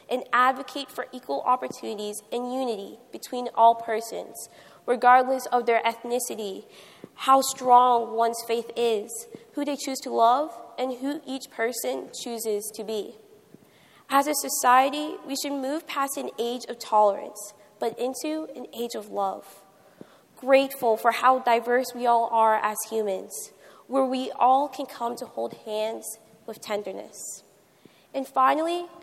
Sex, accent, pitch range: female, American, 225-270 Hz